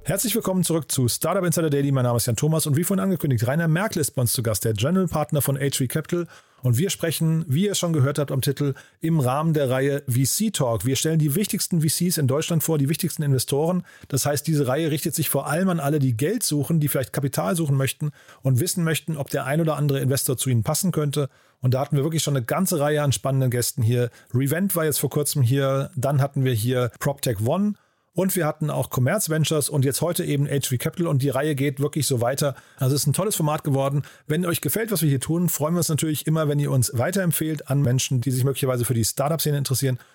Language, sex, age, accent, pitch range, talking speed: German, male, 40-59, German, 130-160 Hz, 245 wpm